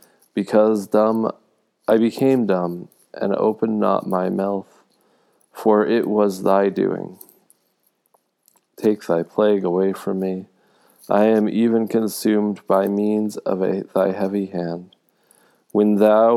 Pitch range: 95-105 Hz